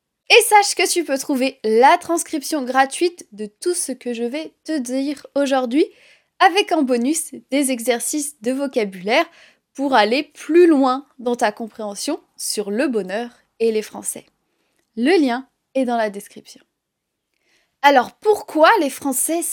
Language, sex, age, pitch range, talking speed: French, female, 20-39, 240-335 Hz, 150 wpm